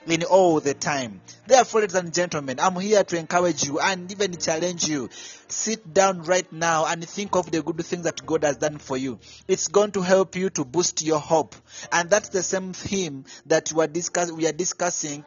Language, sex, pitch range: Japanese, male, 155-190 Hz